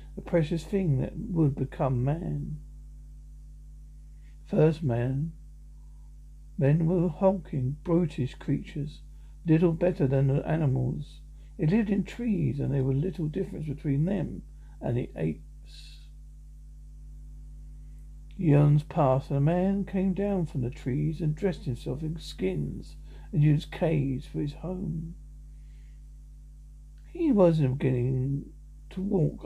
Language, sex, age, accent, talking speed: English, male, 60-79, British, 125 wpm